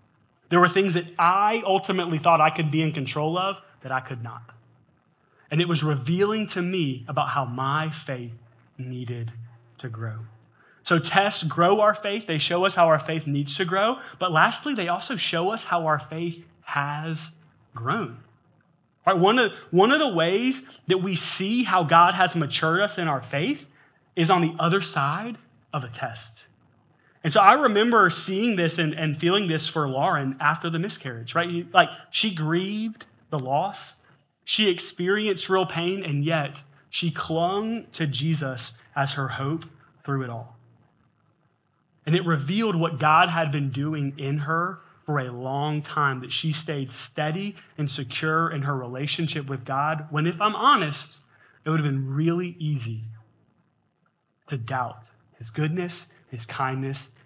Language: English